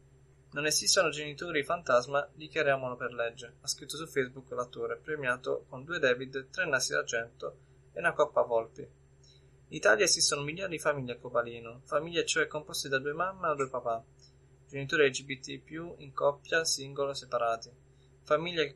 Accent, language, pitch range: native, Italian, 125-155 Hz